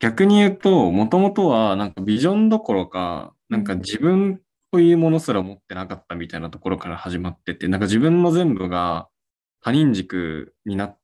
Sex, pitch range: male, 90-145 Hz